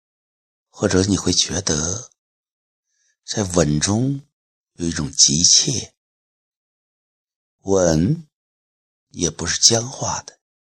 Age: 60-79